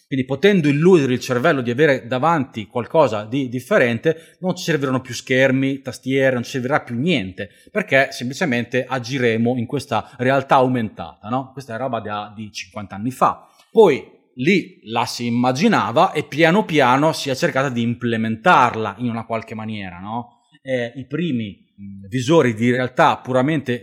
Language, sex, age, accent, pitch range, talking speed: Italian, male, 30-49, native, 115-150 Hz, 160 wpm